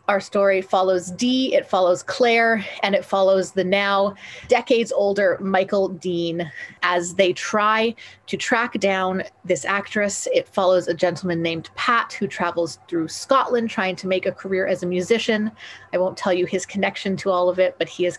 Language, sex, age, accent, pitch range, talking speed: English, female, 30-49, American, 180-225 Hz, 180 wpm